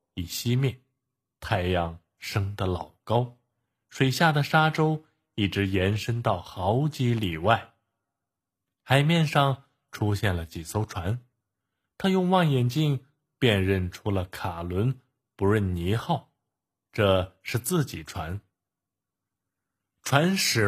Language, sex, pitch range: Chinese, male, 95-135 Hz